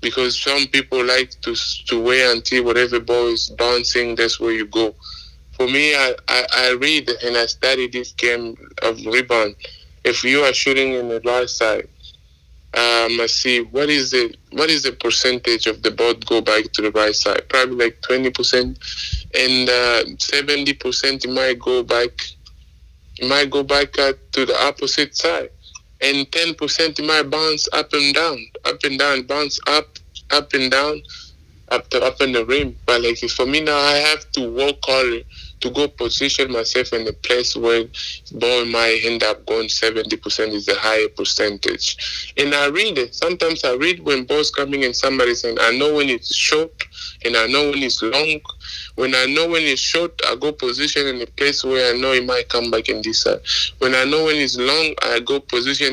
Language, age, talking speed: English, 20-39, 195 wpm